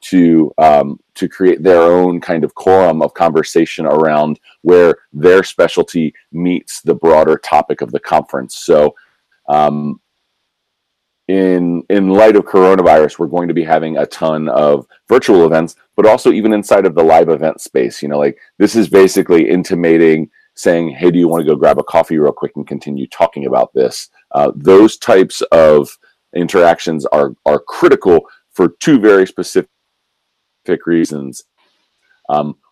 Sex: male